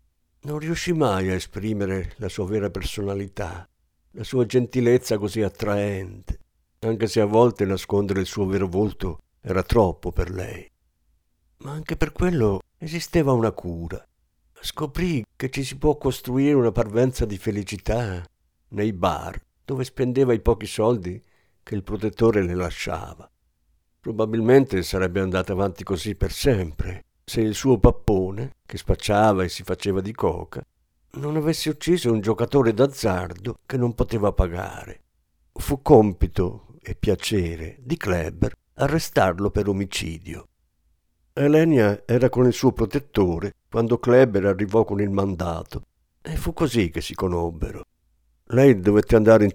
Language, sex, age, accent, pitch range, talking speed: Italian, male, 60-79, native, 90-120 Hz, 140 wpm